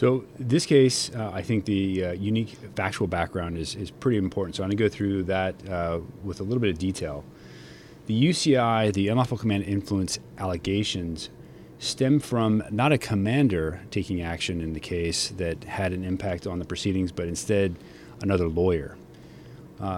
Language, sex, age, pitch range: English, male, 30-49, 95-120 Hz